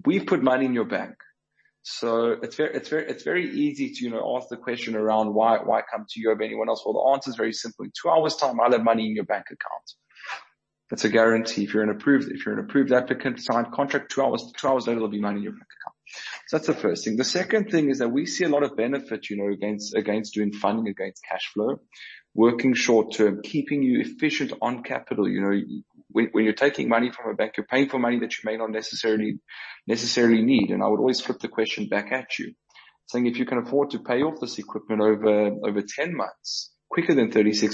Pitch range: 110-130 Hz